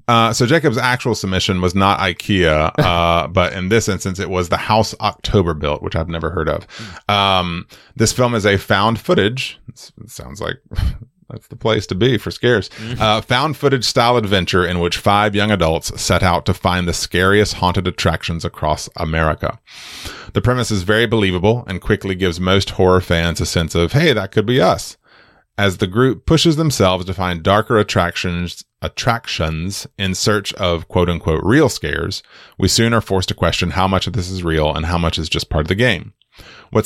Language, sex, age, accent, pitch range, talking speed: English, male, 30-49, American, 85-110 Hz, 190 wpm